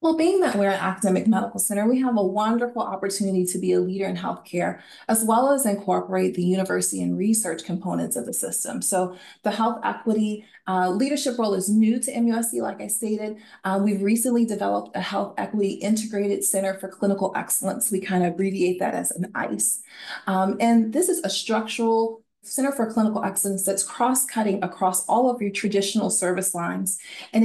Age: 30-49